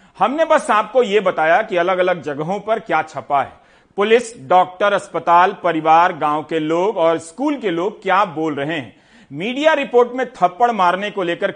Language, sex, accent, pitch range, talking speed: Hindi, male, native, 155-240 Hz, 180 wpm